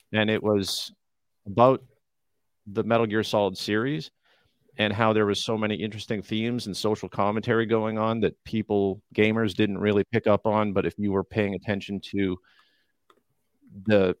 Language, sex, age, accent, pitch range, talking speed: English, male, 40-59, American, 95-115 Hz, 160 wpm